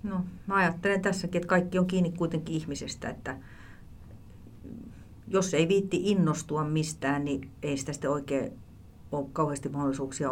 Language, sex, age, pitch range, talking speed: Finnish, female, 40-59, 125-150 Hz, 135 wpm